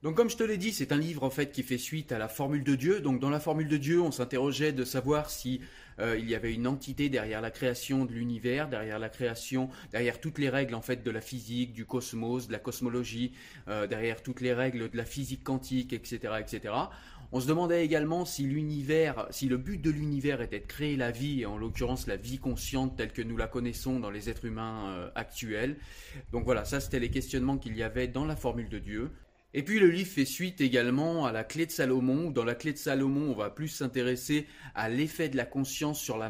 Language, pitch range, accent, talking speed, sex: French, 120-145 Hz, French, 240 wpm, male